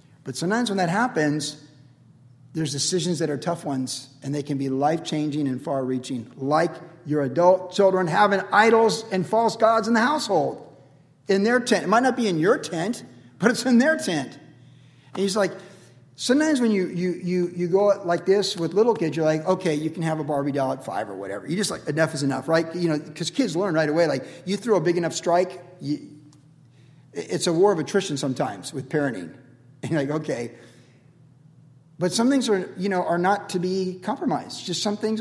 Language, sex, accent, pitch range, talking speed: English, male, American, 145-190 Hz, 205 wpm